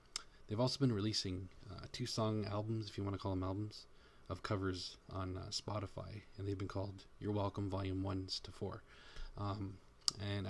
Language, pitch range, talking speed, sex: English, 95-110 Hz, 185 wpm, male